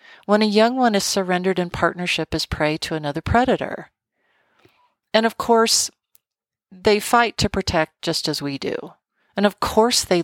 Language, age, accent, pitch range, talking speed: English, 40-59, American, 160-215 Hz, 165 wpm